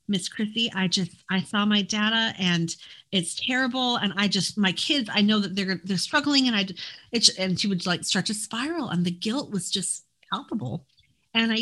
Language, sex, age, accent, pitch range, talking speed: English, female, 40-59, American, 175-230 Hz, 200 wpm